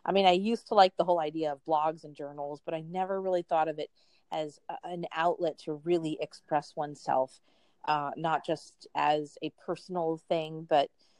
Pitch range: 170-210 Hz